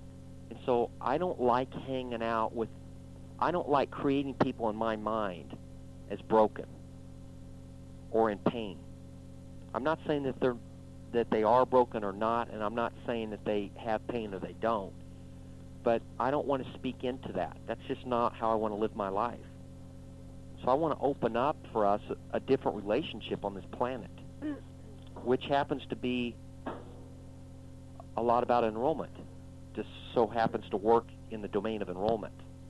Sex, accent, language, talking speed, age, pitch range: male, American, English, 175 wpm, 40-59, 90-125 Hz